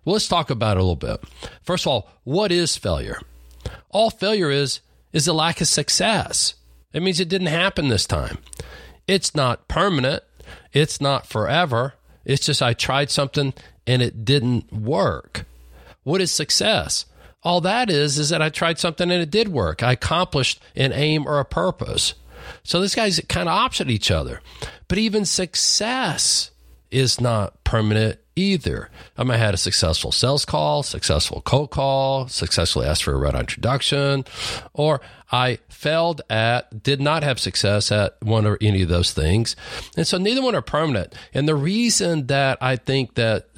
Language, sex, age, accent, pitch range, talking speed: English, male, 40-59, American, 105-155 Hz, 170 wpm